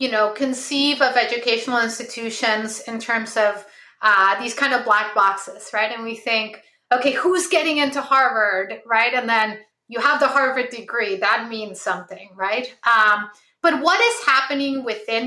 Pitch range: 215-275 Hz